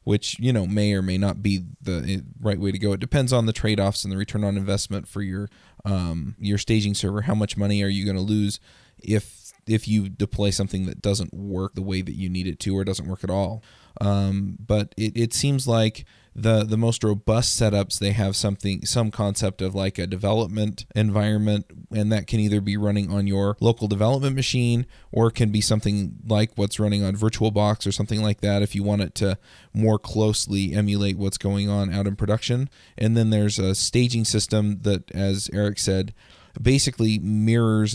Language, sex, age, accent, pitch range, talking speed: English, male, 20-39, American, 100-110 Hz, 200 wpm